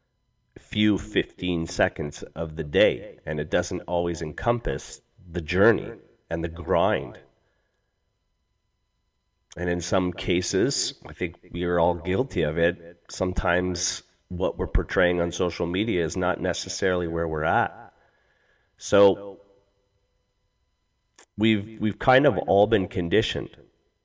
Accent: American